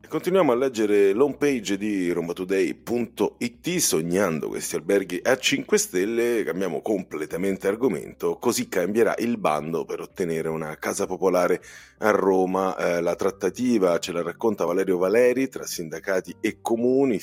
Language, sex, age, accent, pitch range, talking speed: Italian, male, 40-59, native, 85-135 Hz, 135 wpm